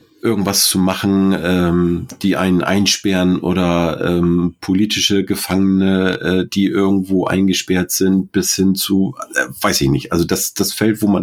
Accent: German